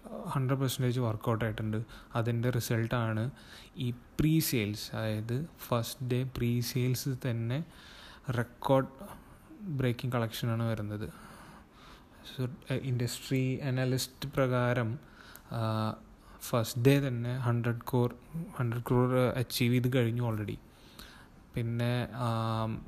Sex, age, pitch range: male, 20-39, 115-130 Hz